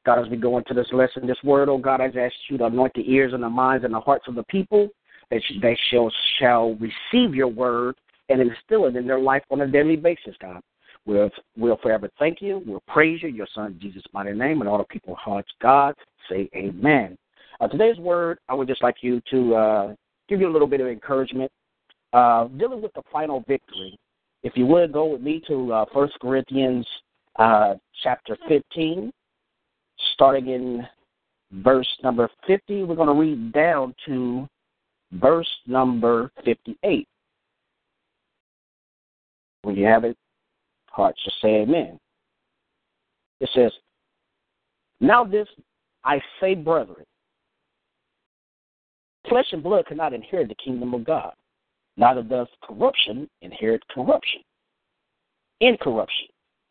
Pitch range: 120-155 Hz